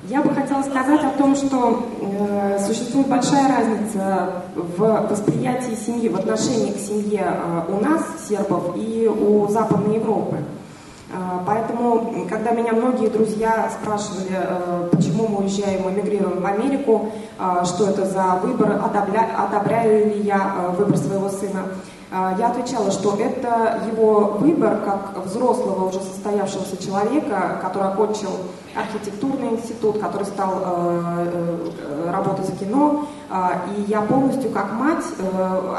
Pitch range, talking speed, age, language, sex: 190-225 Hz, 130 wpm, 20-39, Russian, female